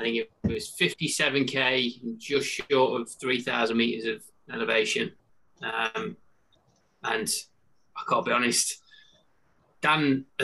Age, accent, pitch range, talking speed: 20-39, British, 115-140 Hz, 115 wpm